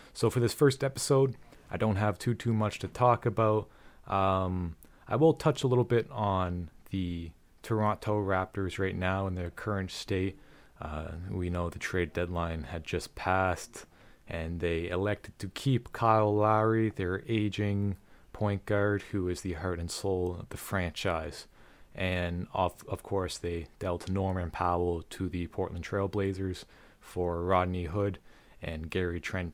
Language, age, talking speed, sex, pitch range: English, 20-39, 160 wpm, male, 90-105 Hz